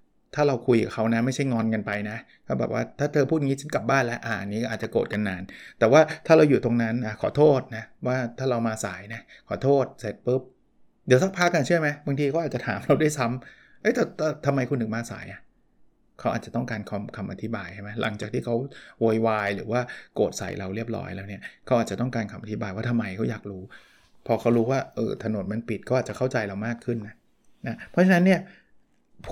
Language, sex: Thai, male